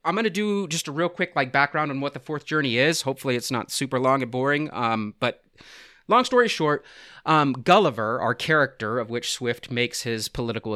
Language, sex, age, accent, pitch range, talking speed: English, male, 30-49, American, 120-155 Hz, 210 wpm